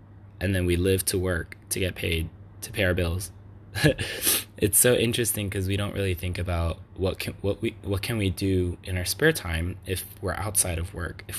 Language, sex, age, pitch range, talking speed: English, male, 20-39, 90-100 Hz, 210 wpm